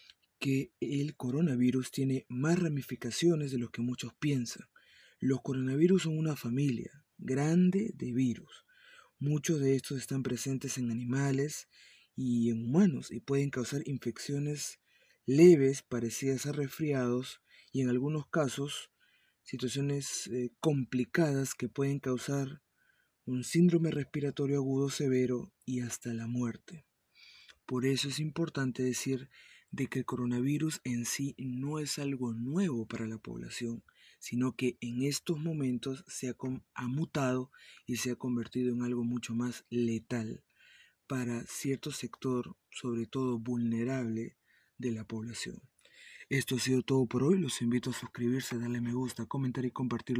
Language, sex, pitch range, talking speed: Spanish, male, 120-140 Hz, 140 wpm